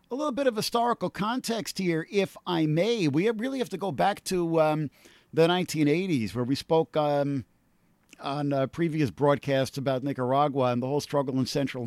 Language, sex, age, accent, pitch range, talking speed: English, male, 50-69, American, 130-165 Hz, 180 wpm